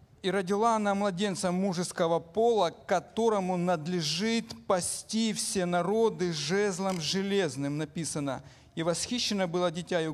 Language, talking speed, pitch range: Ukrainian, 105 wpm, 165-205 Hz